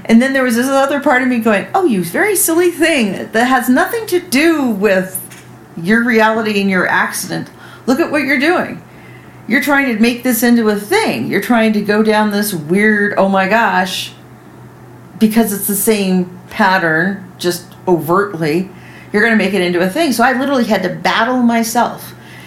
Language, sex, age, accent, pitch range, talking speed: English, female, 50-69, American, 175-230 Hz, 190 wpm